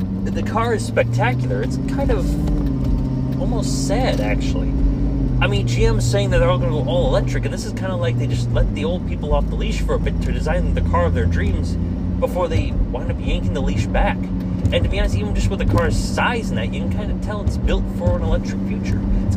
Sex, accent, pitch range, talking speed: male, American, 90-105 Hz, 245 wpm